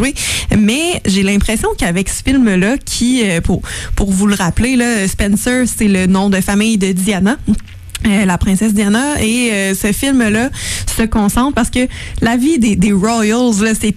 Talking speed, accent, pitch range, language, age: 180 wpm, Canadian, 195-240 Hz, French, 20-39